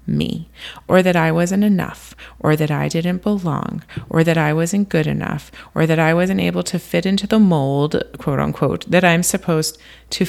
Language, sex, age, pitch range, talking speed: English, female, 30-49, 165-225 Hz, 195 wpm